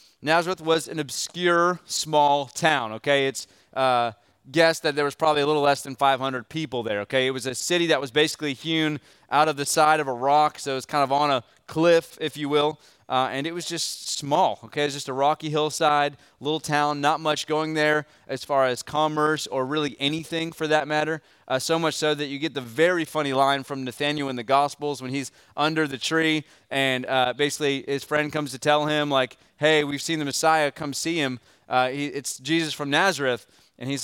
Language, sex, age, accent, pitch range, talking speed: English, male, 30-49, American, 135-160 Hz, 215 wpm